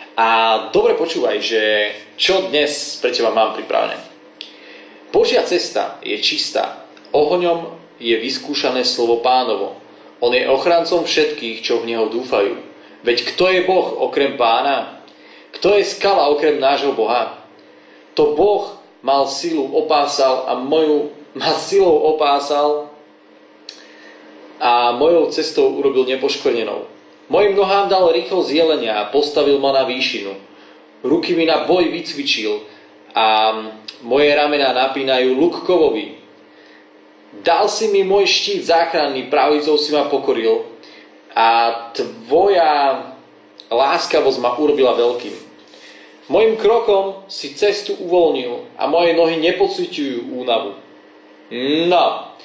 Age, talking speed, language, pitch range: 30-49, 110 wpm, Slovak, 130-205 Hz